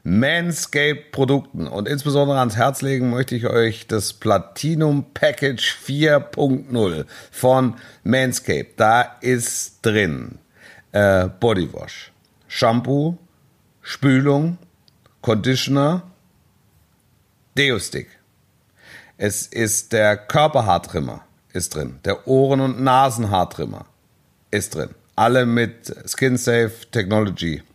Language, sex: German, male